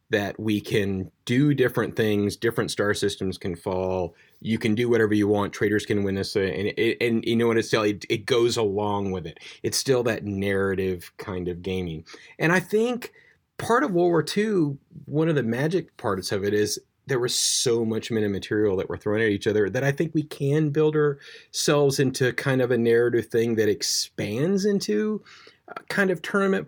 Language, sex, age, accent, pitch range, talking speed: English, male, 30-49, American, 100-140 Hz, 200 wpm